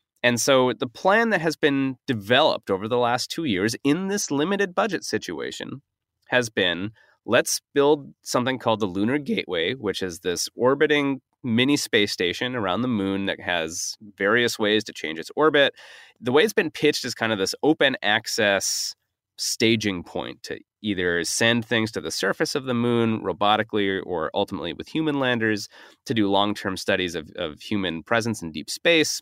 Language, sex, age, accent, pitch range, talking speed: English, male, 30-49, American, 105-145 Hz, 175 wpm